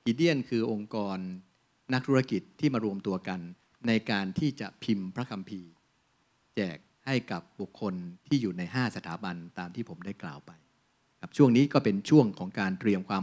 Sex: male